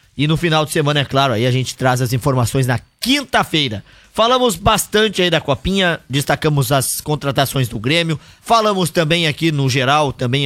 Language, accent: Portuguese, Brazilian